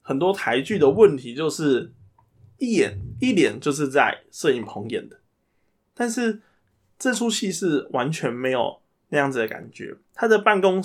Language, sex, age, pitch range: Chinese, male, 20-39, 130-190 Hz